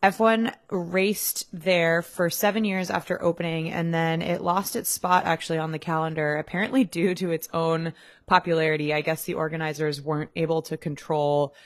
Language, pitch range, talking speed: English, 155-180 Hz, 165 wpm